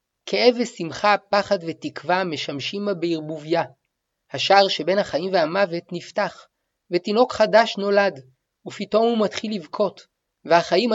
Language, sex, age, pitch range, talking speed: Hebrew, male, 30-49, 160-205 Hz, 110 wpm